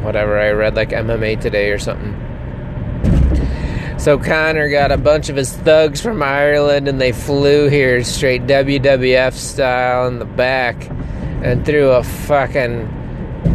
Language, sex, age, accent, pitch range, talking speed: English, male, 20-39, American, 120-155 Hz, 140 wpm